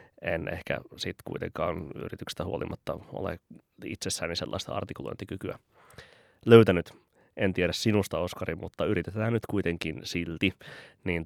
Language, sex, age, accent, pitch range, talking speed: Finnish, male, 20-39, native, 85-100 Hz, 110 wpm